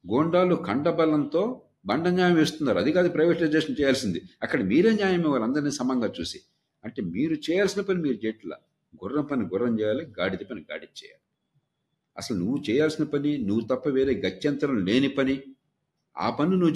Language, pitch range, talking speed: Telugu, 145-175 Hz, 155 wpm